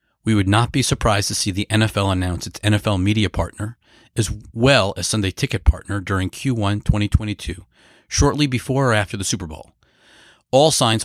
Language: English